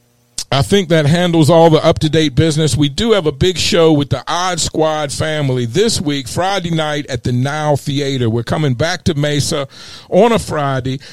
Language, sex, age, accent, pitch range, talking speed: English, male, 40-59, American, 135-165 Hz, 190 wpm